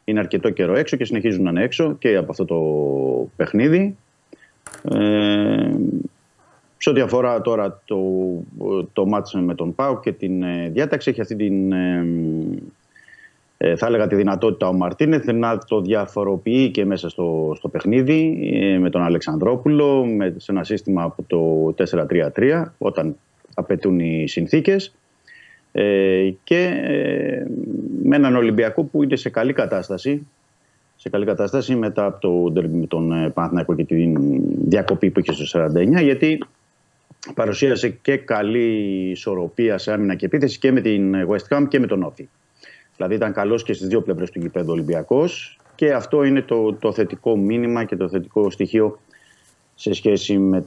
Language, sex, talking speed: Greek, male, 155 wpm